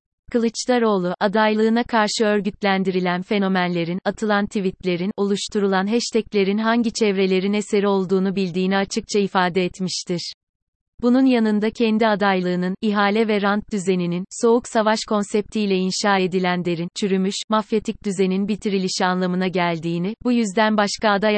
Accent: native